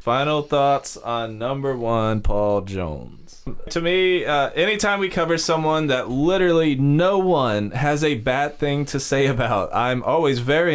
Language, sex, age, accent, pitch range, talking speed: English, male, 20-39, American, 110-145 Hz, 155 wpm